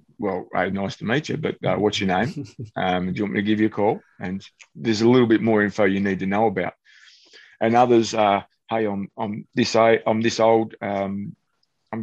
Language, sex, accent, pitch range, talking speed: English, male, Australian, 100-115 Hz, 220 wpm